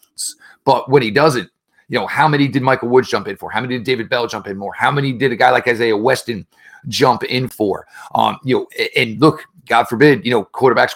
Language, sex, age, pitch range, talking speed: English, male, 40-59, 115-145 Hz, 235 wpm